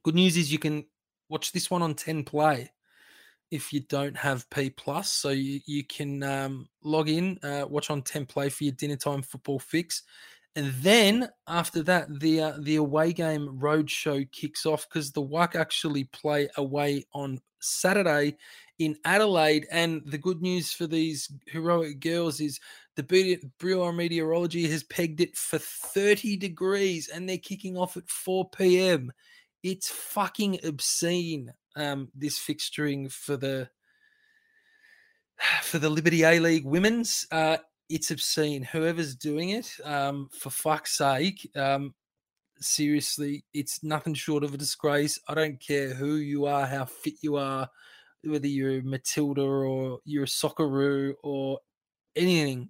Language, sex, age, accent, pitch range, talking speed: English, male, 20-39, Australian, 140-170 Hz, 150 wpm